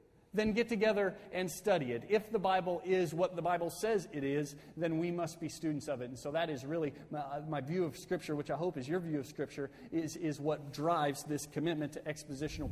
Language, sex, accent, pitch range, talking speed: English, male, American, 135-160 Hz, 230 wpm